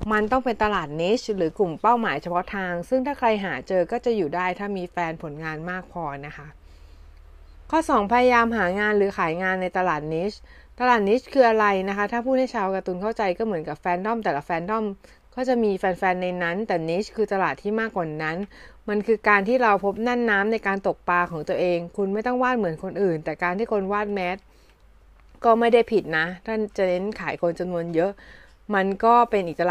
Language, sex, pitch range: Thai, female, 170-215 Hz